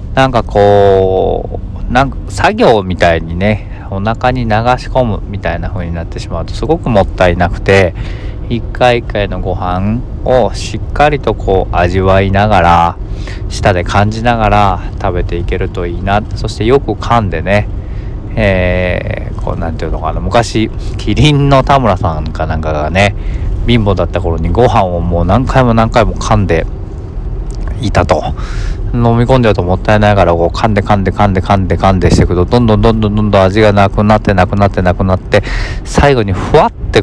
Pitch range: 90-110 Hz